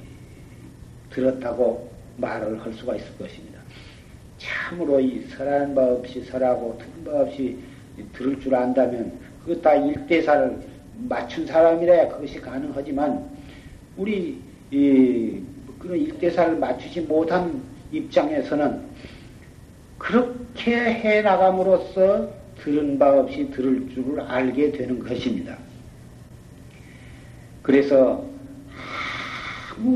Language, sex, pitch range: Korean, male, 135-190 Hz